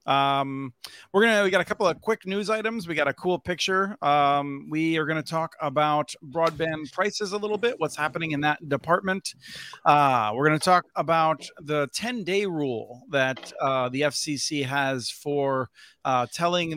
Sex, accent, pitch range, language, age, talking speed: male, American, 135-180 Hz, English, 40-59, 185 wpm